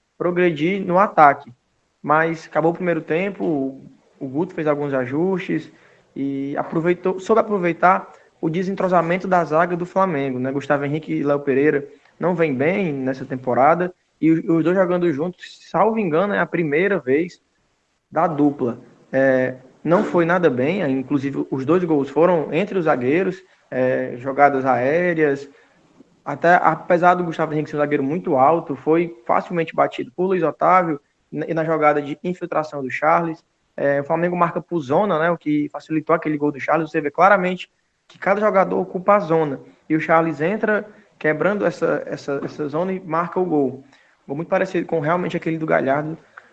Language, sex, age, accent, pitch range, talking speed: Portuguese, male, 20-39, Brazilian, 145-175 Hz, 160 wpm